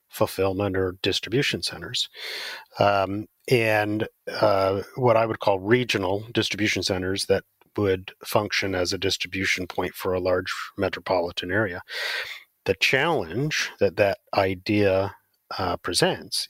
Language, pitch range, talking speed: English, 95-115 Hz, 120 wpm